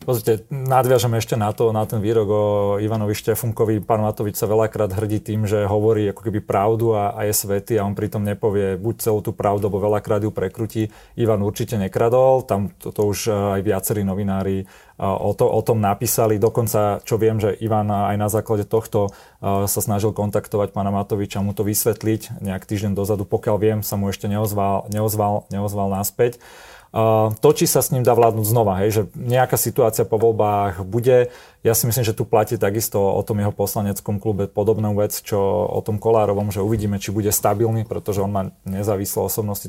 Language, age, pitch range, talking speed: Slovak, 30-49, 100-115 Hz, 190 wpm